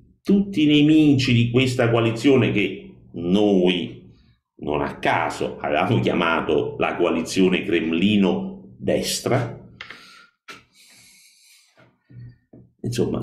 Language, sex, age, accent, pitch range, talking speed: Italian, male, 50-69, native, 80-125 Hz, 80 wpm